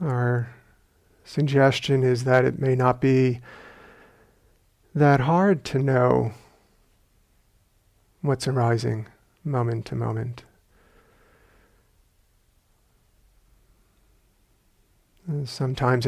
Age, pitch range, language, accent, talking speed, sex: 50-69, 115-135 Hz, English, American, 65 wpm, male